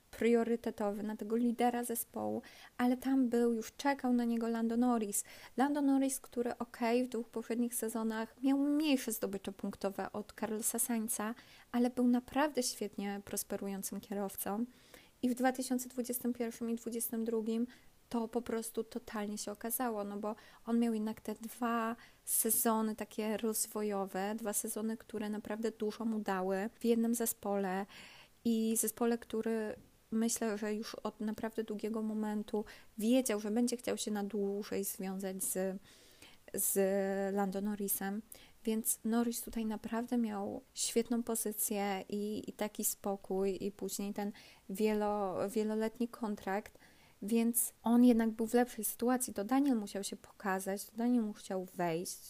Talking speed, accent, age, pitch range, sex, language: 140 wpm, native, 20-39, 205-235 Hz, female, Polish